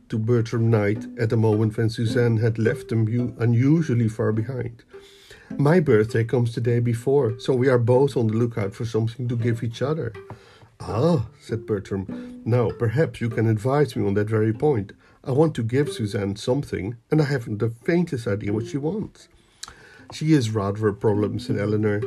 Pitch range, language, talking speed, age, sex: 115-145 Hz, Dutch, 185 wpm, 50-69, male